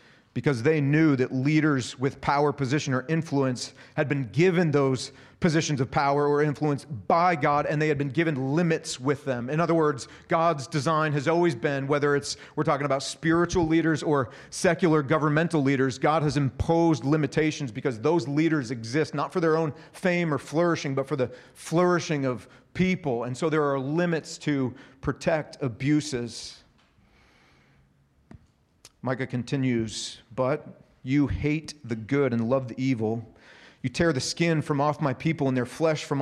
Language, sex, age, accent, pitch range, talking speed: English, male, 40-59, American, 130-155 Hz, 165 wpm